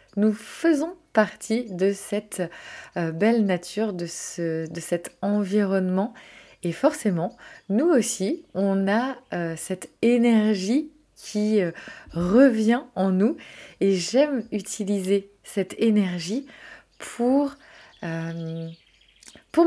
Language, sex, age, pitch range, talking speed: French, female, 20-39, 190-255 Hz, 105 wpm